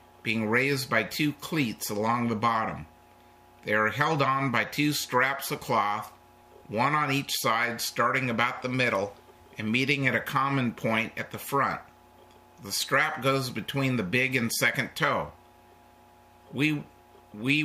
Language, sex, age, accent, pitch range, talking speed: English, male, 50-69, American, 115-135 Hz, 155 wpm